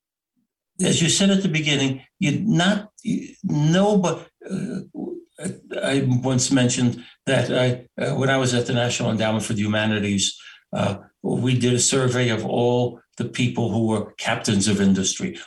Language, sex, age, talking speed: English, male, 60-79, 145 wpm